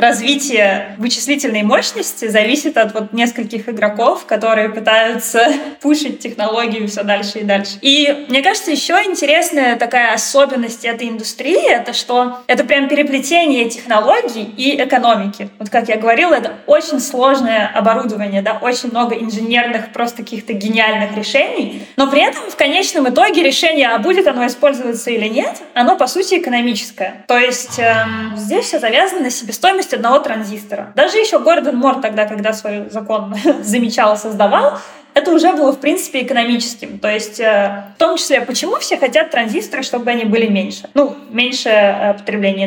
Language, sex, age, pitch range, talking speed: Russian, female, 20-39, 220-285 Hz, 155 wpm